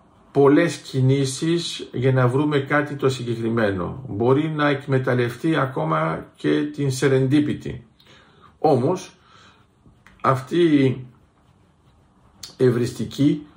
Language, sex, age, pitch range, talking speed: Greek, male, 50-69, 120-145 Hz, 85 wpm